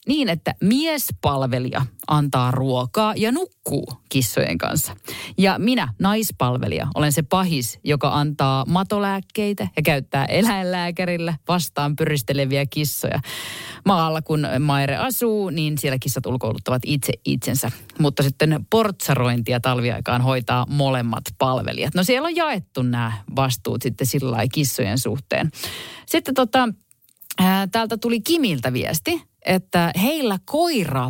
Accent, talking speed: native, 120 wpm